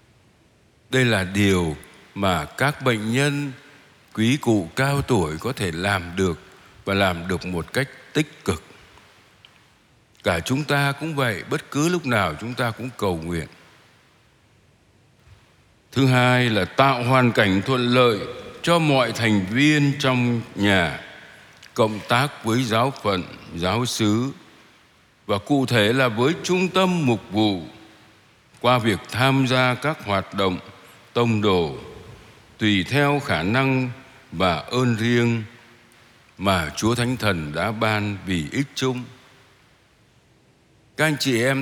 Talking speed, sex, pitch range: 135 wpm, male, 105-135 Hz